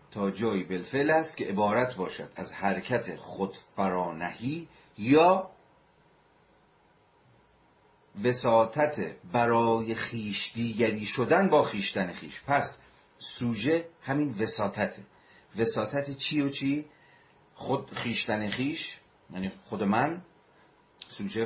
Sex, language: male, Persian